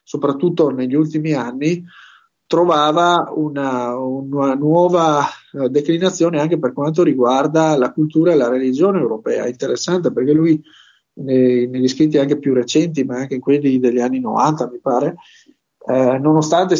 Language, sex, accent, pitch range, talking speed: Italian, male, native, 130-165 Hz, 140 wpm